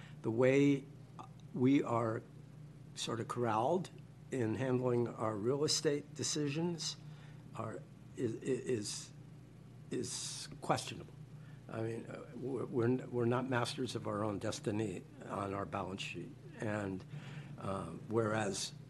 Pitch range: 115-145 Hz